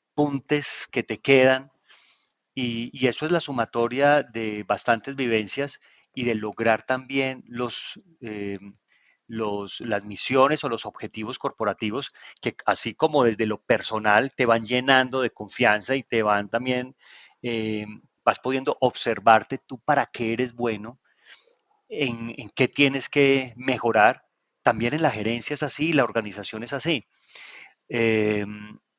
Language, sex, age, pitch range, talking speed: Spanish, male, 30-49, 105-130 Hz, 135 wpm